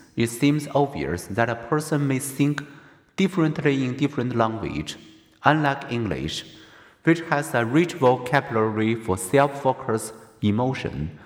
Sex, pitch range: male, 115-145 Hz